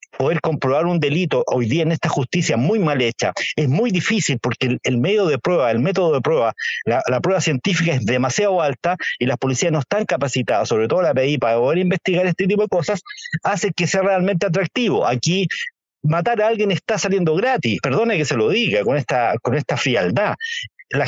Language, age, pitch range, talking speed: Spanish, 50-69, 130-185 Hz, 205 wpm